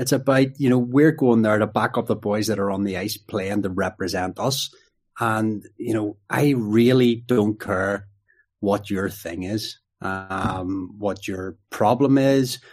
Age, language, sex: 30-49, English, male